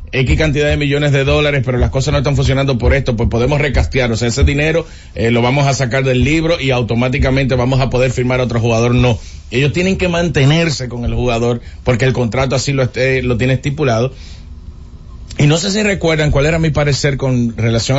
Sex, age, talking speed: male, 30-49, 215 wpm